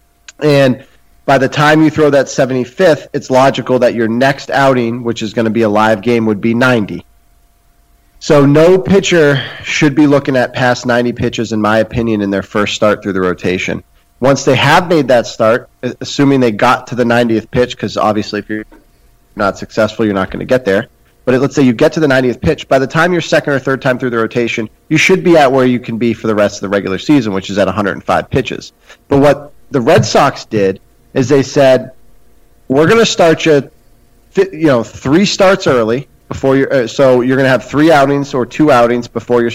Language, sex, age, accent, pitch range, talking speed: English, male, 30-49, American, 115-140 Hz, 220 wpm